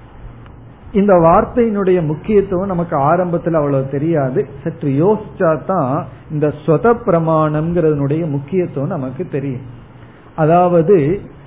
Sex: male